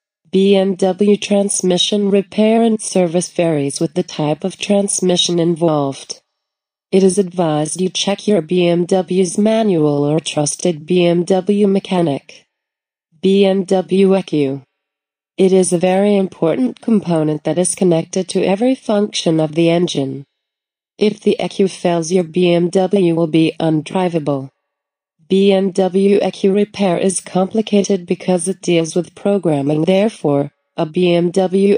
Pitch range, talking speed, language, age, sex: 165-200 Hz, 120 wpm, English, 30-49, female